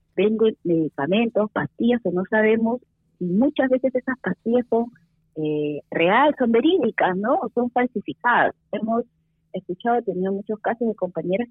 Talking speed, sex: 145 wpm, female